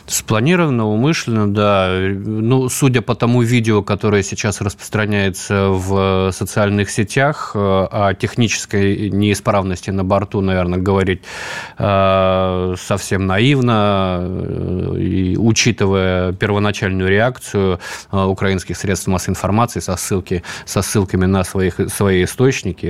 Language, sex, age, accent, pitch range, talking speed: Russian, male, 20-39, native, 95-105 Hz, 95 wpm